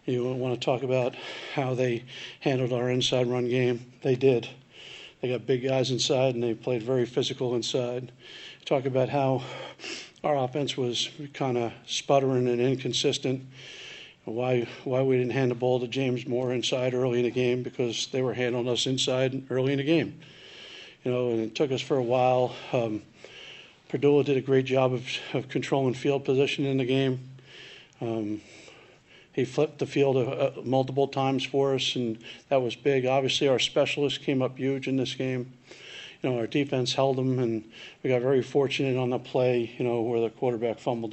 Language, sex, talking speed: English, male, 185 wpm